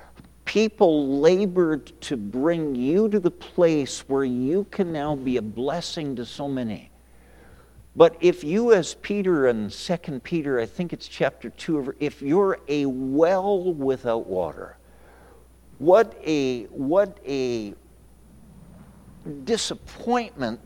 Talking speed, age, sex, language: 120 wpm, 50-69, male, English